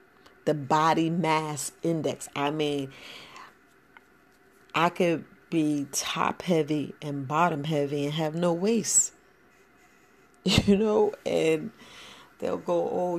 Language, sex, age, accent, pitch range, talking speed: English, female, 40-59, American, 145-175 Hz, 110 wpm